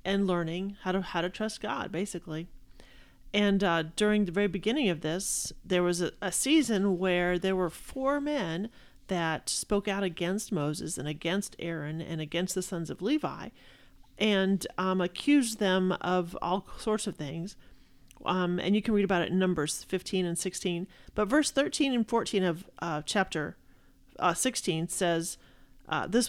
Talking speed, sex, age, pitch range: 170 wpm, male, 40-59, 175-210 Hz